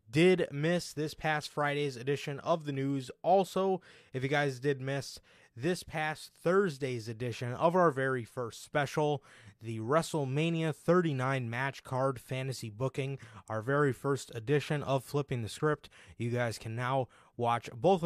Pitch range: 120-150 Hz